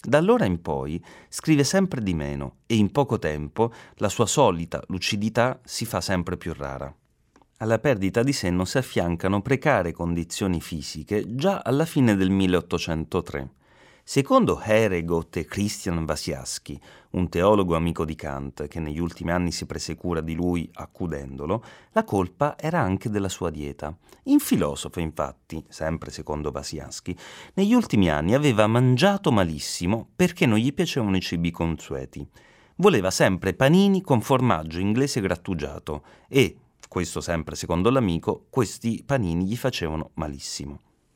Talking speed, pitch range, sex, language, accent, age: 140 wpm, 80-130 Hz, male, Italian, native, 30-49